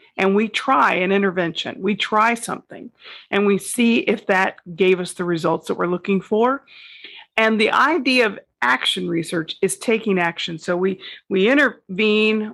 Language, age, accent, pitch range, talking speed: English, 40-59, American, 180-220 Hz, 165 wpm